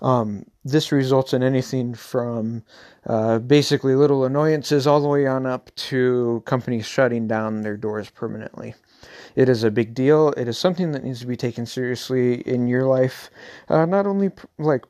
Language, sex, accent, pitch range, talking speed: English, male, American, 125-155 Hz, 175 wpm